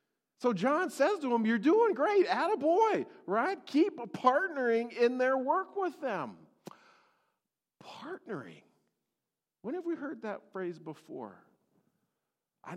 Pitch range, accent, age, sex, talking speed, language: 185-290 Hz, American, 40-59, male, 120 wpm, English